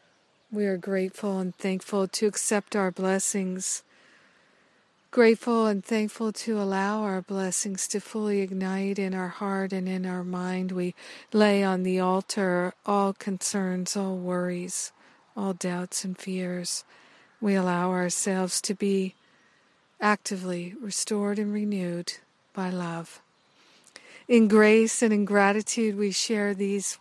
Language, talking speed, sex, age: English, 130 wpm, female, 50-69